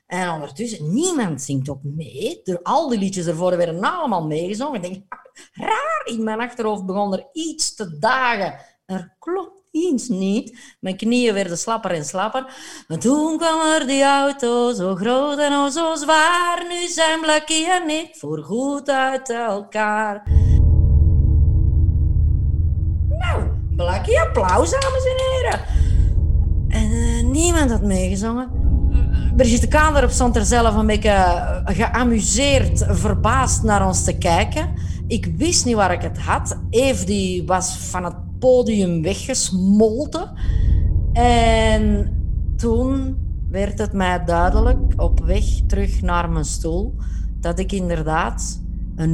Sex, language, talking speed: female, Dutch, 135 wpm